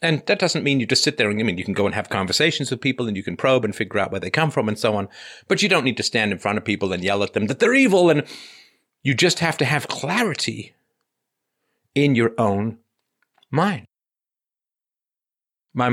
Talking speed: 235 wpm